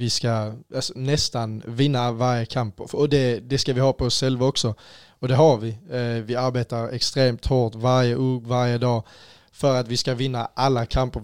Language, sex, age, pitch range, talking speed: Danish, male, 20-39, 115-130 Hz, 180 wpm